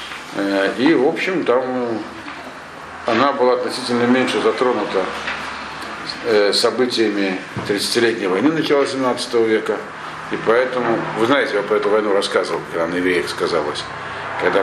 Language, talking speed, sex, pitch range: Russian, 120 wpm, male, 100-135 Hz